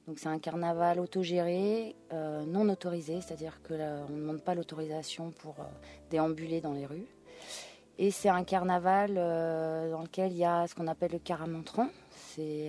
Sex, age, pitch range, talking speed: female, 30-49, 150-175 Hz, 170 wpm